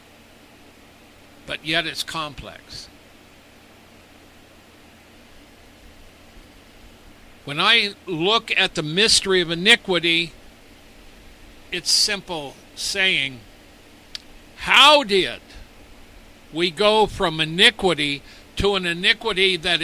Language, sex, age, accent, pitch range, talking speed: English, male, 60-79, American, 150-195 Hz, 75 wpm